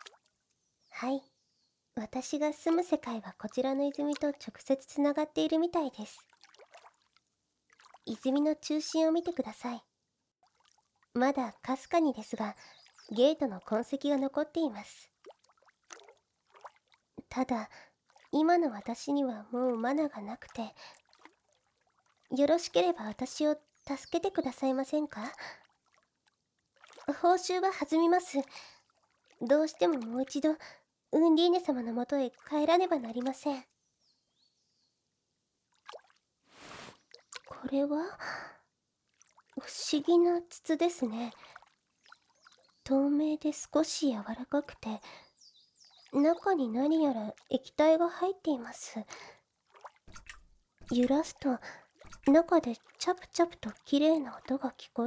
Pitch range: 250-320 Hz